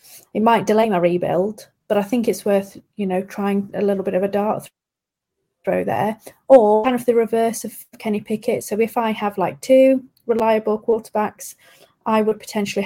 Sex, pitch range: female, 190-225 Hz